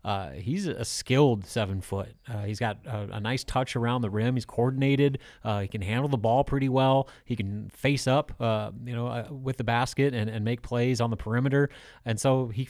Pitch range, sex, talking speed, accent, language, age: 110-130 Hz, male, 220 wpm, American, English, 30-49